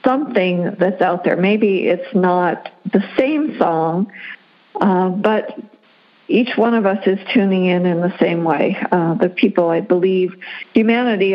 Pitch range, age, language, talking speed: 180-220 Hz, 60-79, English, 155 wpm